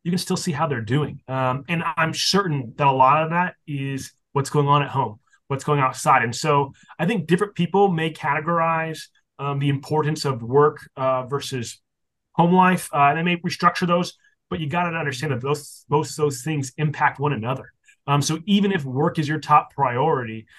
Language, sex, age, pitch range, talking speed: English, male, 30-49, 135-165 Hz, 205 wpm